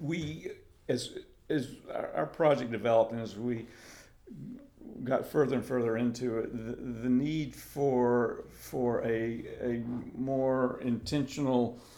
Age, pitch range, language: 50-69, 110-125 Hz, English